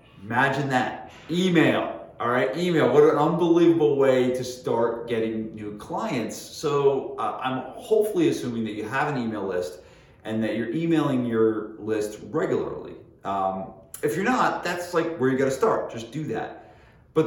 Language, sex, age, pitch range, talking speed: English, male, 30-49, 115-160 Hz, 165 wpm